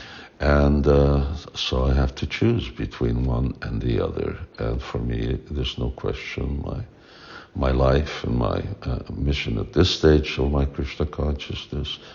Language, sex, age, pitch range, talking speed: English, male, 60-79, 65-80 Hz, 160 wpm